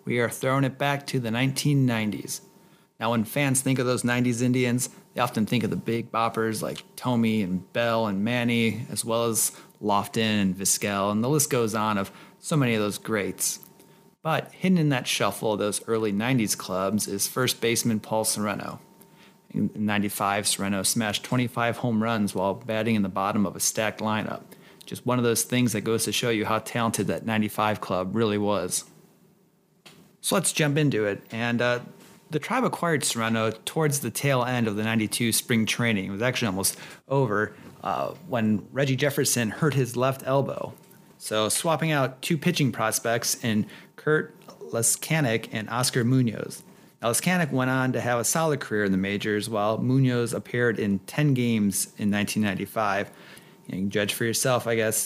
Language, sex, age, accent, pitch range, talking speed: English, male, 30-49, American, 105-135 Hz, 180 wpm